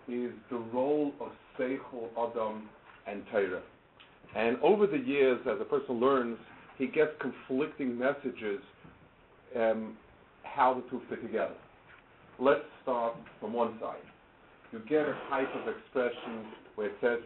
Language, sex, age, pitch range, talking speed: English, male, 50-69, 115-145 Hz, 140 wpm